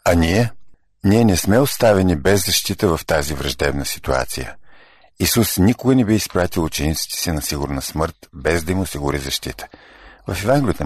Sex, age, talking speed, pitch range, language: male, 50-69, 165 wpm, 75-105 Hz, Bulgarian